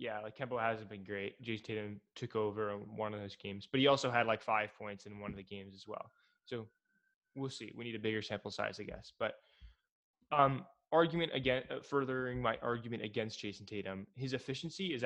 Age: 20-39